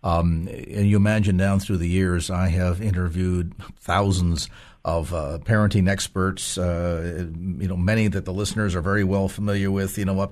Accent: American